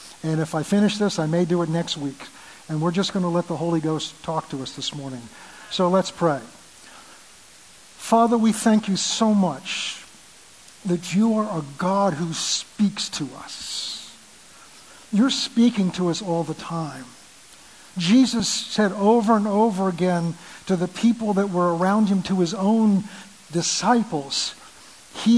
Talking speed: 160 wpm